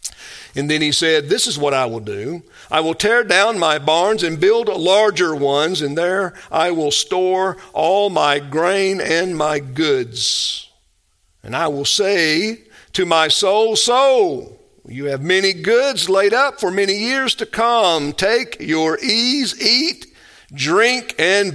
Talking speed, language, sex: 155 wpm, English, male